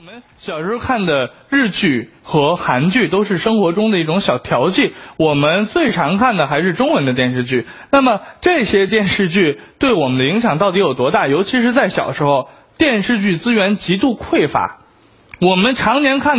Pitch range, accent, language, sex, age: 175-260 Hz, native, Chinese, male, 20-39